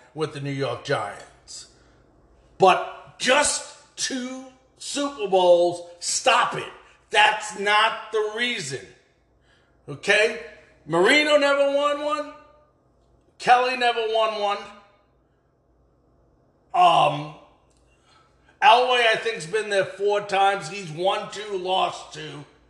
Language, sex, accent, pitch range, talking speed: English, male, American, 170-235 Hz, 105 wpm